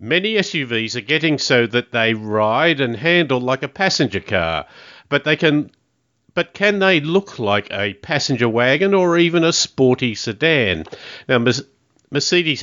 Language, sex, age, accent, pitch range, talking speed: English, male, 50-69, Australian, 115-150 Hz, 155 wpm